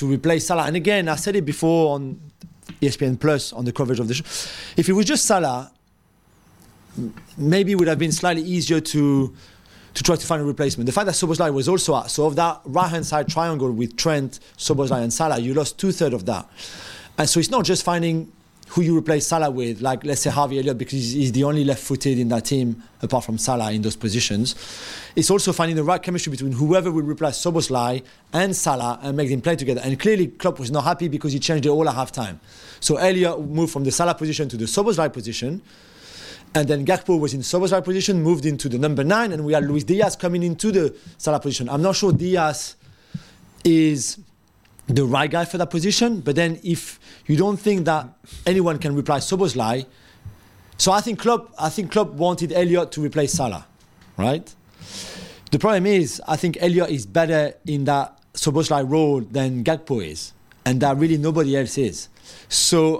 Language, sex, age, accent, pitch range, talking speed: English, male, 30-49, French, 135-175 Hz, 205 wpm